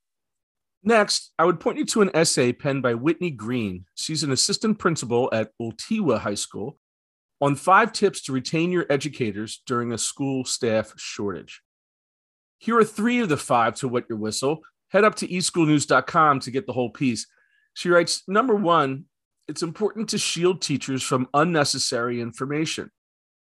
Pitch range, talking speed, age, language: 125-175 Hz, 160 wpm, 40-59, English